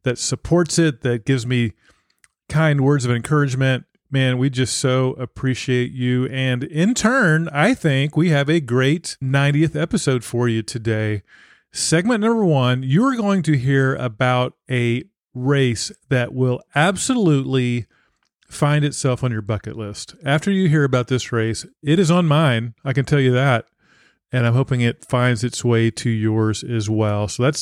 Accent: American